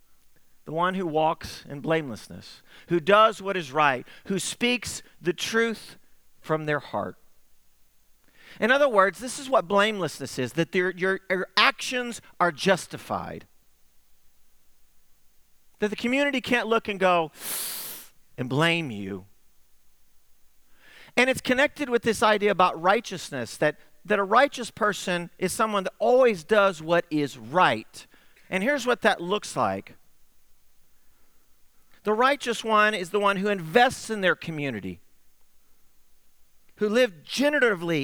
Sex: male